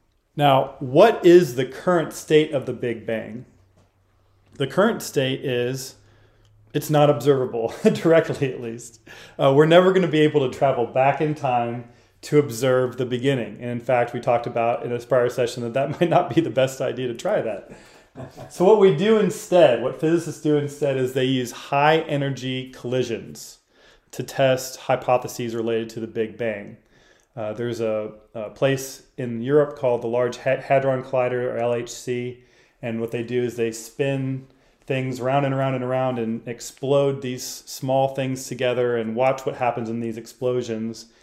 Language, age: English, 30-49